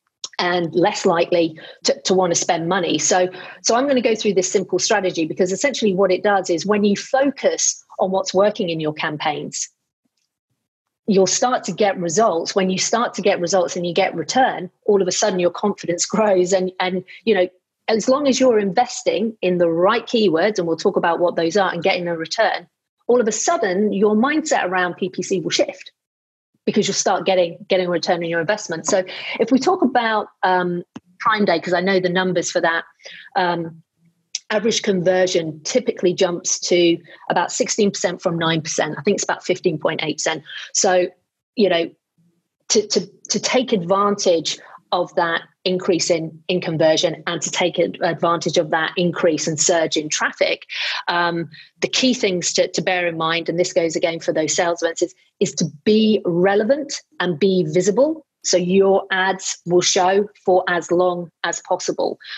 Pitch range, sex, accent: 175-210 Hz, female, British